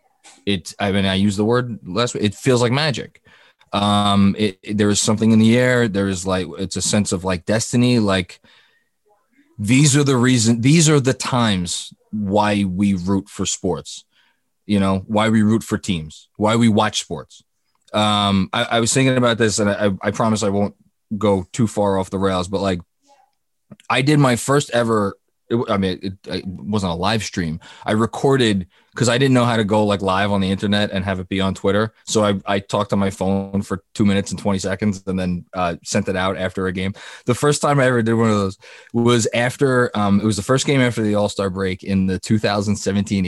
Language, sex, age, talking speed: English, male, 20-39, 215 wpm